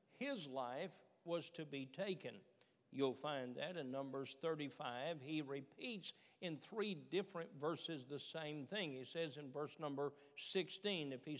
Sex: male